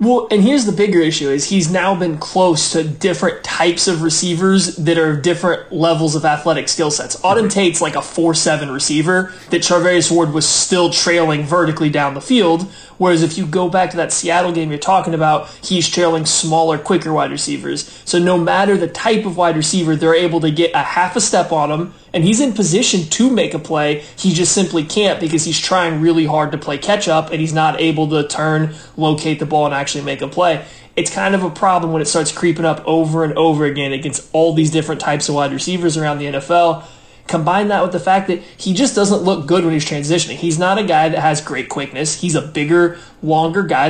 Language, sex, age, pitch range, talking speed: English, male, 20-39, 155-180 Hz, 225 wpm